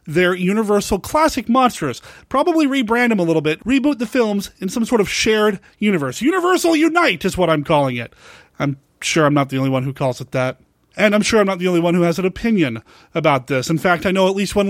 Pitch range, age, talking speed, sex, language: 160-210 Hz, 30-49, 235 wpm, male, English